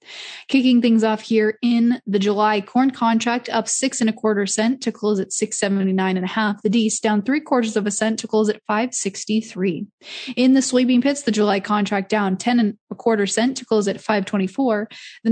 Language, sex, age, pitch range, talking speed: English, female, 20-39, 205-245 Hz, 230 wpm